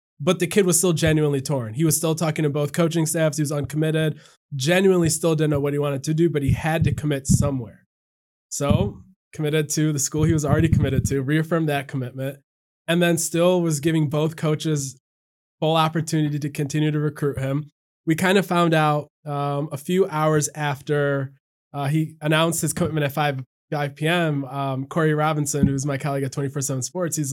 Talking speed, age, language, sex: 195 wpm, 20-39, English, male